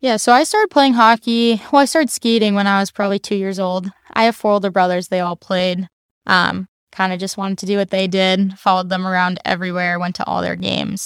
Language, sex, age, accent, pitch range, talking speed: English, female, 20-39, American, 185-220 Hz, 235 wpm